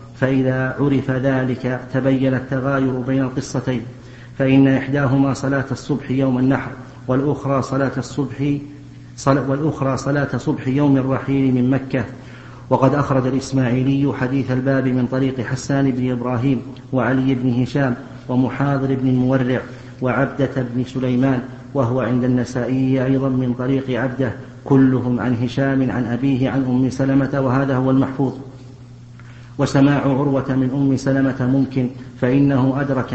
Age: 50-69